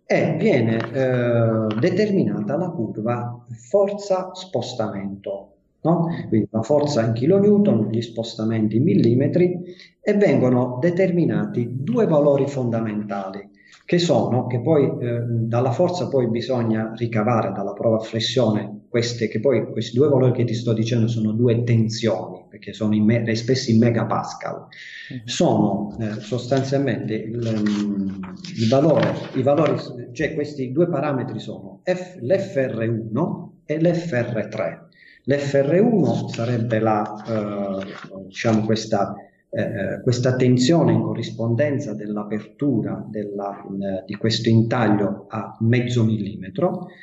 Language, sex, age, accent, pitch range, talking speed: Italian, male, 40-59, native, 110-155 Hz, 115 wpm